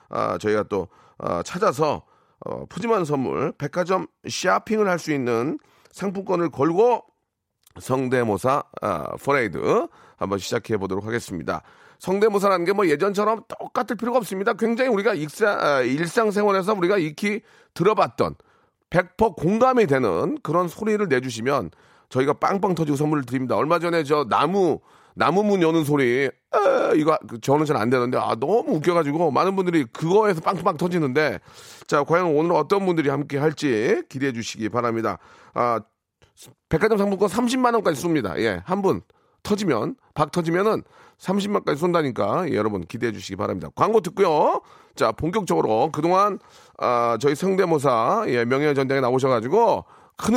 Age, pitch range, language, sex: 40-59, 130-200 Hz, Korean, male